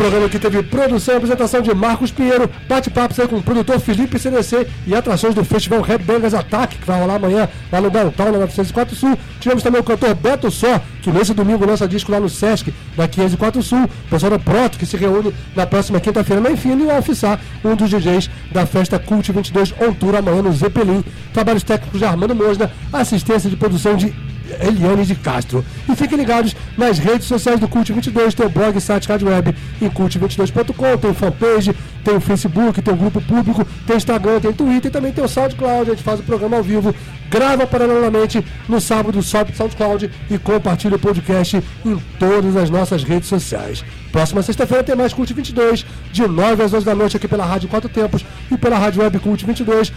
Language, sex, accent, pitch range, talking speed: English, male, Brazilian, 195-230 Hz, 210 wpm